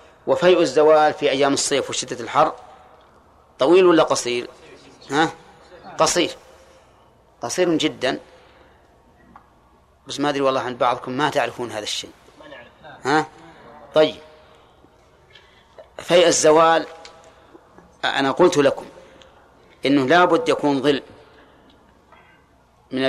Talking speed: 95 wpm